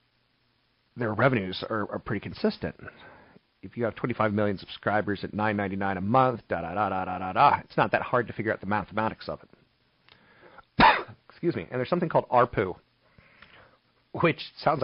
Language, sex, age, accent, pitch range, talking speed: English, male, 40-59, American, 100-125 Hz, 150 wpm